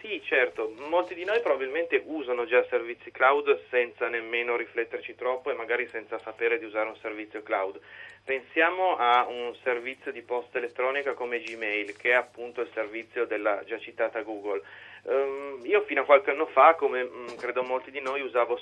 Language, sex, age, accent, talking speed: Italian, male, 30-49, native, 170 wpm